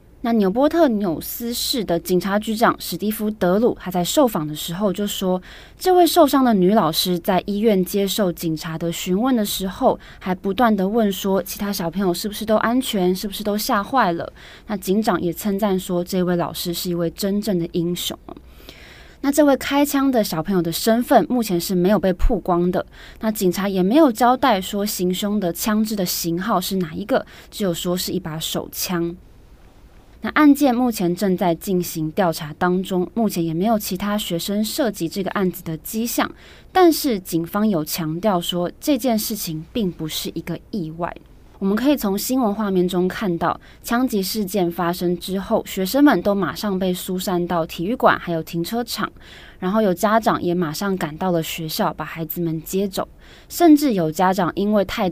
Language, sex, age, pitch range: Chinese, female, 20-39, 175-220 Hz